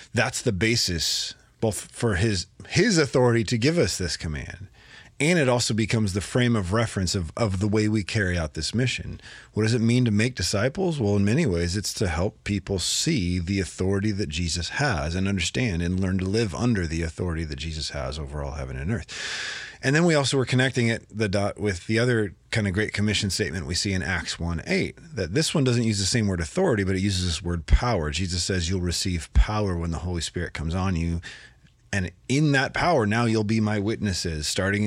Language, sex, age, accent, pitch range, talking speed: English, male, 30-49, American, 90-115 Hz, 220 wpm